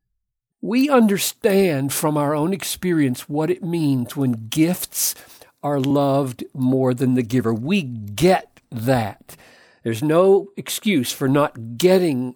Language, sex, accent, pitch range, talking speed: English, male, American, 135-195 Hz, 125 wpm